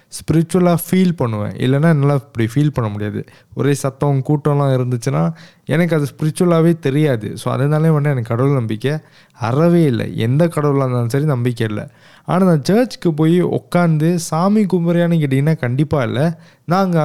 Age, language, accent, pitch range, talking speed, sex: 20-39, Tamil, native, 130-170 Hz, 150 wpm, male